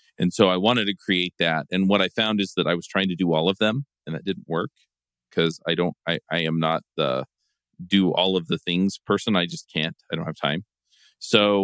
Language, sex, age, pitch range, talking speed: English, male, 40-59, 85-100 Hz, 235 wpm